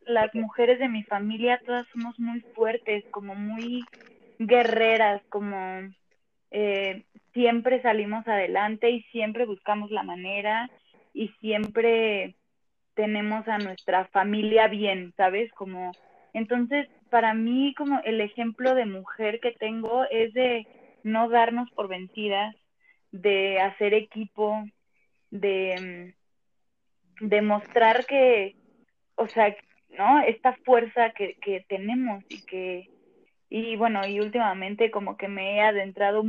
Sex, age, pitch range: female, 20-39, 200-235 Hz